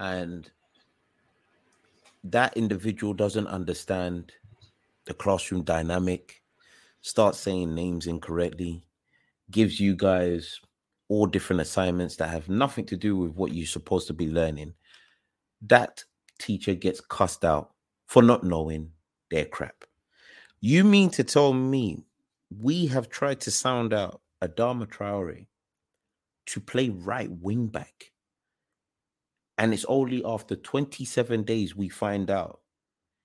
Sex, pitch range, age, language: male, 90-120 Hz, 30-49, English